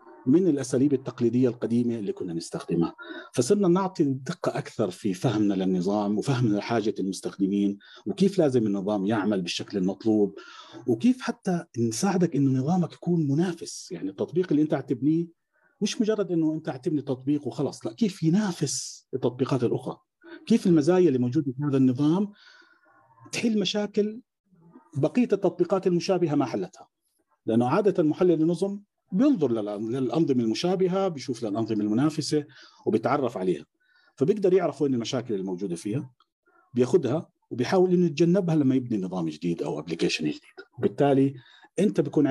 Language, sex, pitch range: Arabic, male, 115-185 Hz